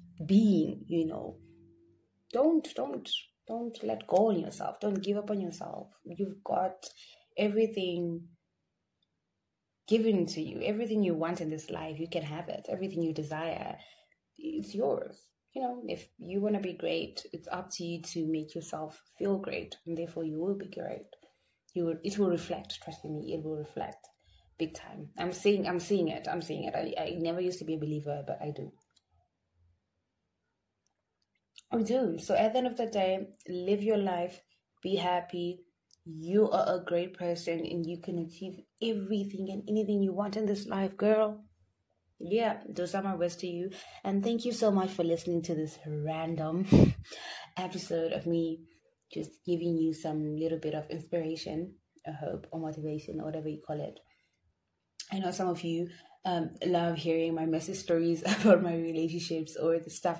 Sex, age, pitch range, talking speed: female, 20-39, 160-195 Hz, 175 wpm